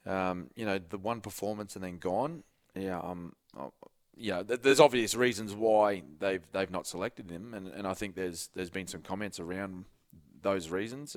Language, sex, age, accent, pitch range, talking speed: English, male, 20-39, Australian, 90-105 Hz, 185 wpm